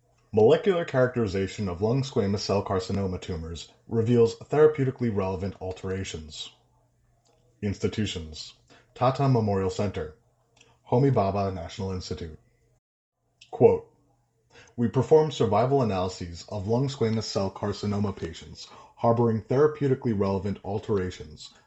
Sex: male